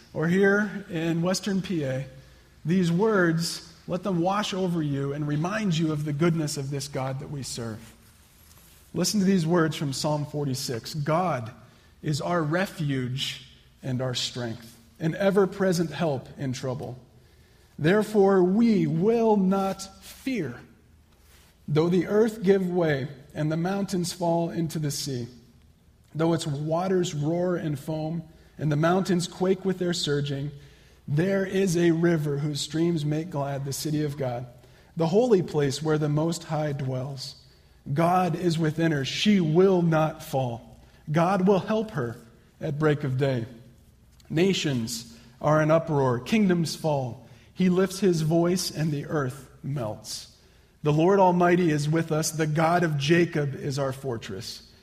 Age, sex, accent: 40-59, male, American